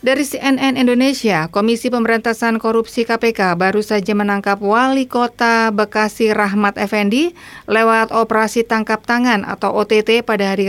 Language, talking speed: Indonesian, 130 wpm